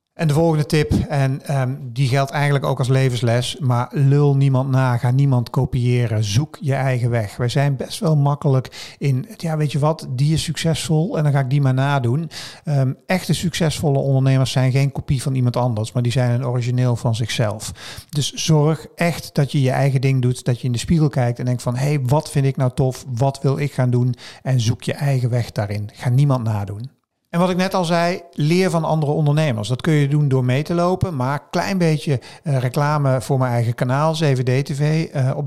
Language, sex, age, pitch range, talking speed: Dutch, male, 50-69, 125-155 Hz, 210 wpm